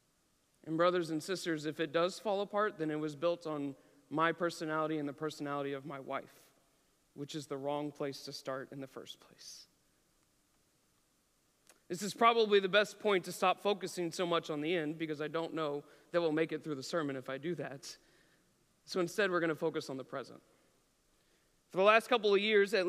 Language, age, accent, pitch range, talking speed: English, 40-59, American, 160-210 Hz, 205 wpm